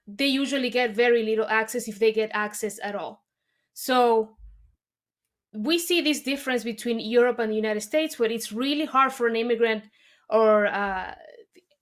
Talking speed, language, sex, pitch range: 160 wpm, English, female, 220-255 Hz